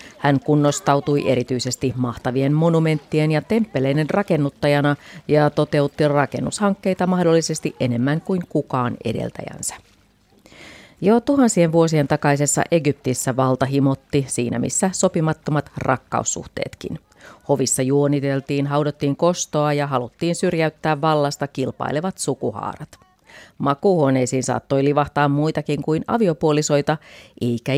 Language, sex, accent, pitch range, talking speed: Finnish, female, native, 135-165 Hz, 95 wpm